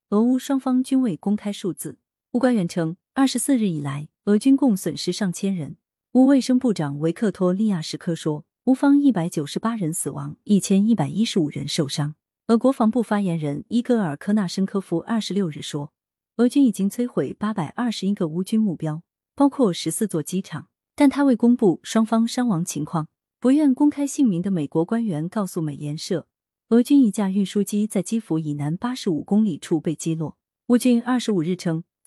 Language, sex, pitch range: Chinese, female, 165-235 Hz